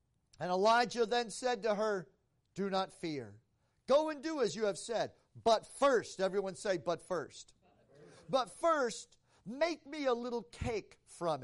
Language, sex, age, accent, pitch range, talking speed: English, male, 50-69, American, 155-235 Hz, 155 wpm